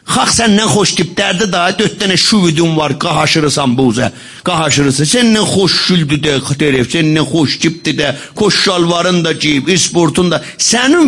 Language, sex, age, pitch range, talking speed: Persian, male, 50-69, 160-235 Hz, 110 wpm